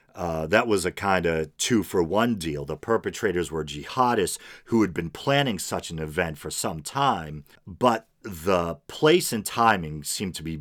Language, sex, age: English, male, 40-59